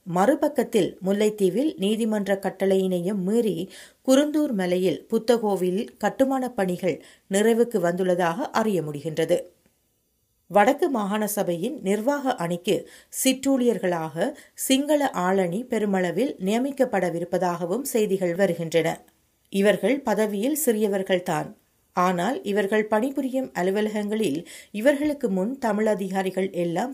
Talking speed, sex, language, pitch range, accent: 85 wpm, female, Tamil, 185-245 Hz, native